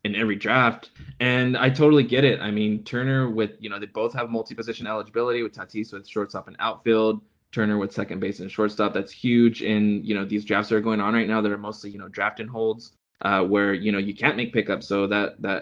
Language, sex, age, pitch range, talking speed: English, male, 20-39, 105-120 Hz, 240 wpm